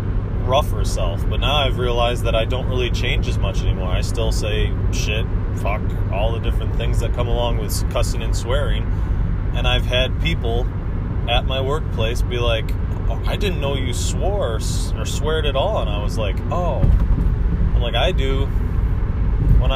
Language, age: English, 20-39